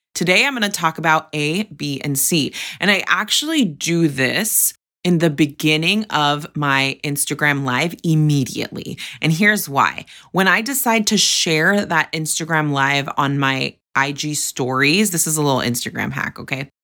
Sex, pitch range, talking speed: female, 140-175 Hz, 160 wpm